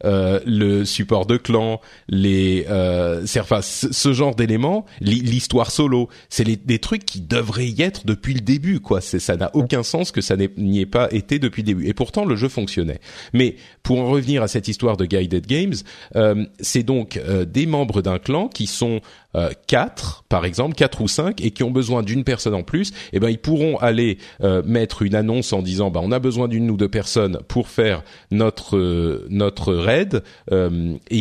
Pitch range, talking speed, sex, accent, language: 95-125 Hz, 205 wpm, male, French, French